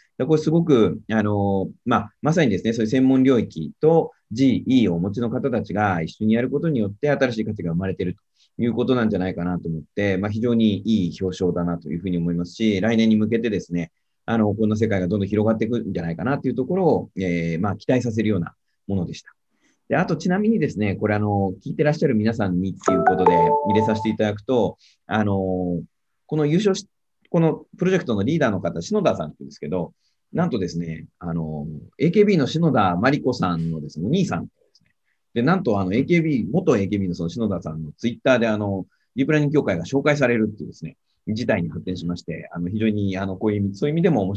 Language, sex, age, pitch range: Japanese, male, 30-49, 90-130 Hz